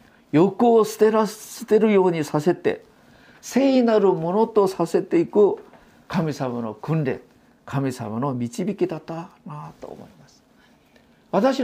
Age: 50-69